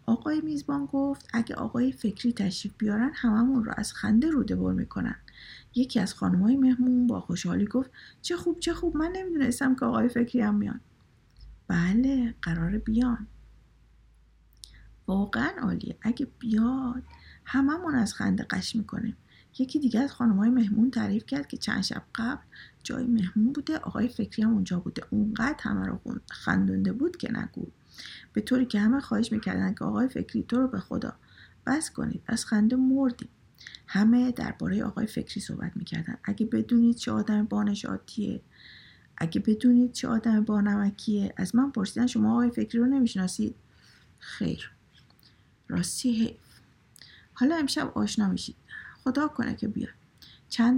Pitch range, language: 210-255 Hz, Persian